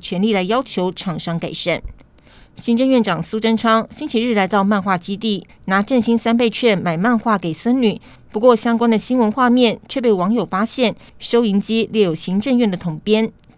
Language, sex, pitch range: Chinese, female, 190-230 Hz